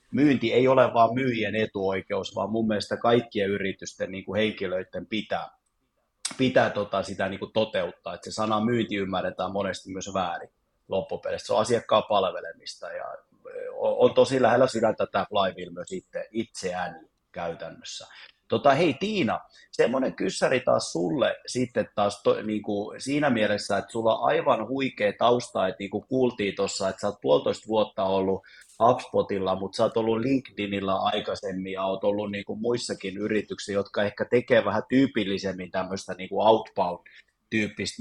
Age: 30-49